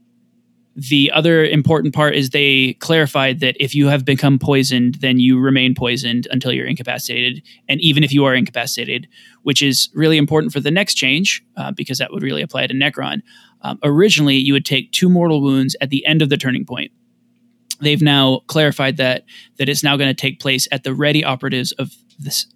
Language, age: English, 20-39